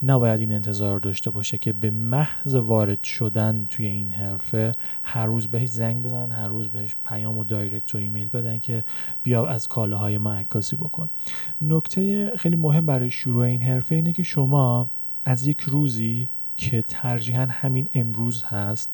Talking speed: 170 wpm